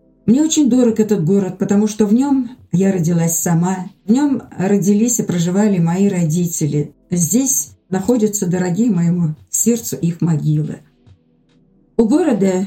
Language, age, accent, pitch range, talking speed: Russian, 50-69, native, 170-225 Hz, 135 wpm